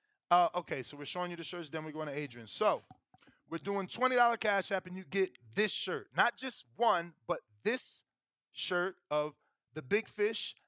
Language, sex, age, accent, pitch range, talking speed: English, male, 20-39, American, 150-205 Hz, 190 wpm